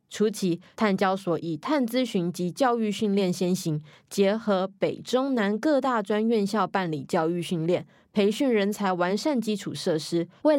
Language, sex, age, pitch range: Chinese, female, 20-39, 170-220 Hz